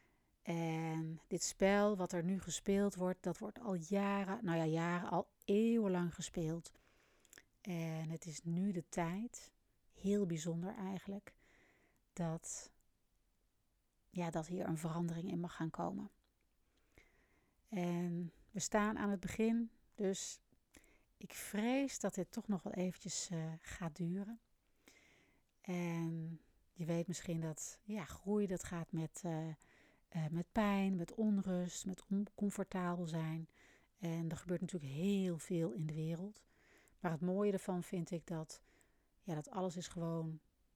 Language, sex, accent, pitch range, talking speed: Dutch, female, Dutch, 165-195 Hz, 135 wpm